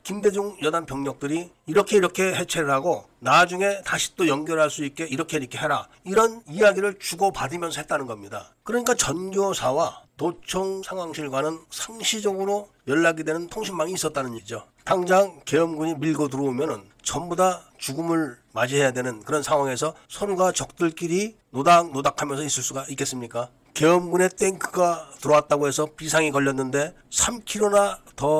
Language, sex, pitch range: Korean, male, 150-195 Hz